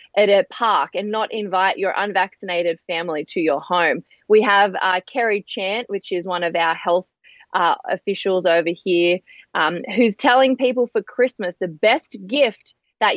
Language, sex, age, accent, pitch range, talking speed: English, female, 20-39, Australian, 185-245 Hz, 170 wpm